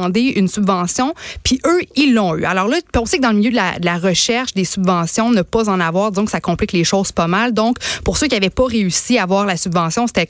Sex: female